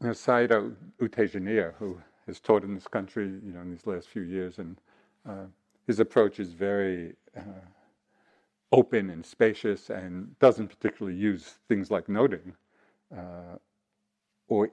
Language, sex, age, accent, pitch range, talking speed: English, male, 50-69, American, 95-115 Hz, 145 wpm